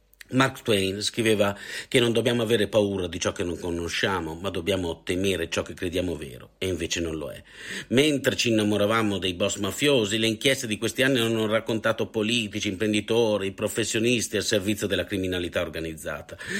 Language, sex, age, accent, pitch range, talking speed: Italian, male, 50-69, native, 95-125 Hz, 165 wpm